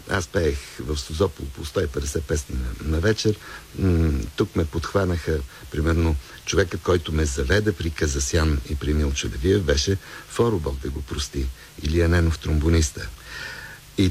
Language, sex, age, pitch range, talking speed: Bulgarian, male, 60-79, 75-100 Hz, 135 wpm